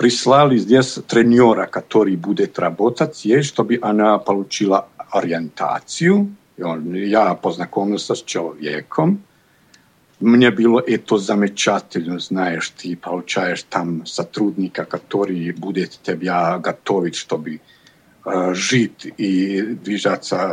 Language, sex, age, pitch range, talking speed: Russian, male, 50-69, 95-140 Hz, 90 wpm